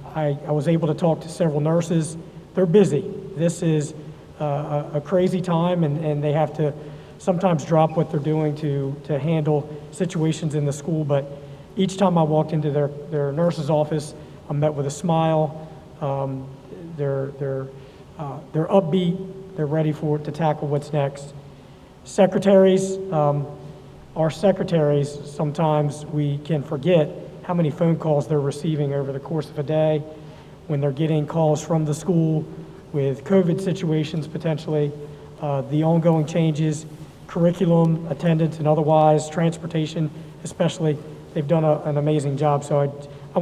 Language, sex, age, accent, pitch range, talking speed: English, male, 40-59, American, 145-165 Hz, 155 wpm